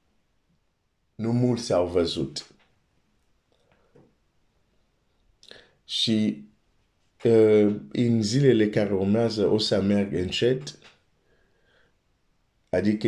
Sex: male